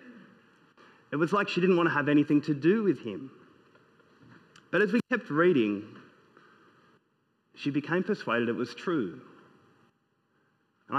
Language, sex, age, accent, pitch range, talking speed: English, male, 30-49, Australian, 130-180 Hz, 135 wpm